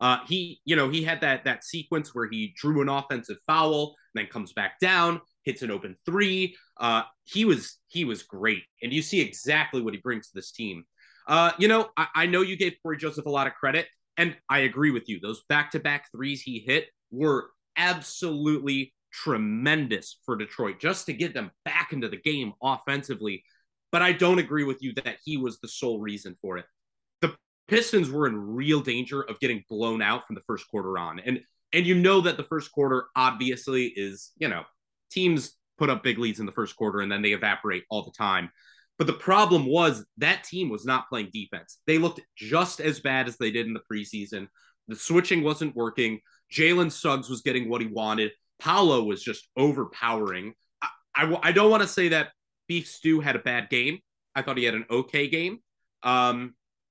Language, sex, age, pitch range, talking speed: English, male, 30-49, 120-165 Hz, 205 wpm